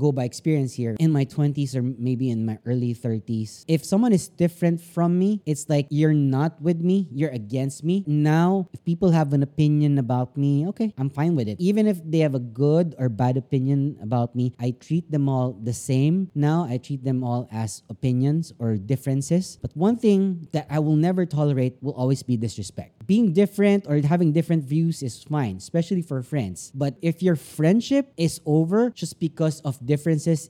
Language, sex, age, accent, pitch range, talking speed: English, male, 30-49, Filipino, 125-165 Hz, 200 wpm